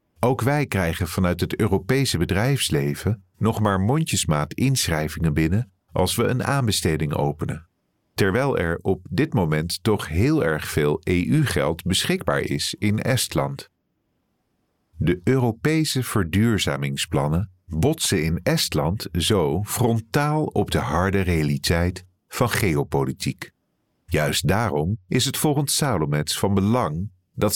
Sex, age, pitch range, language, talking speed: male, 50-69, 80-120 Hz, Dutch, 120 wpm